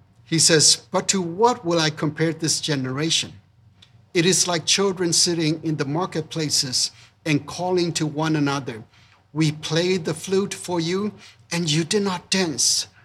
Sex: male